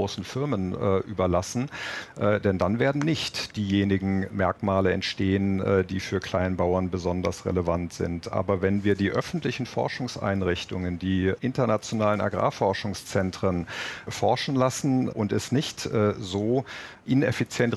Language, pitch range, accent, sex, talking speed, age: German, 95-110 Hz, German, male, 120 wpm, 50-69